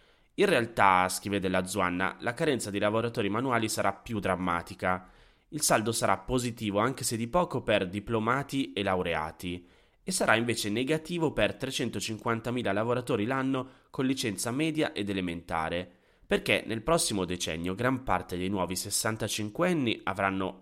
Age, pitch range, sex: 20-39, 95-115 Hz, male